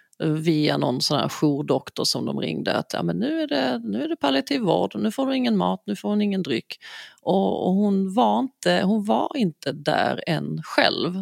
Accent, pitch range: native, 165-215 Hz